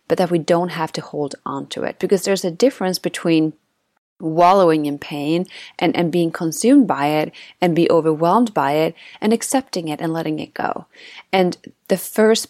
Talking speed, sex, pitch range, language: 185 wpm, female, 155-195 Hz, English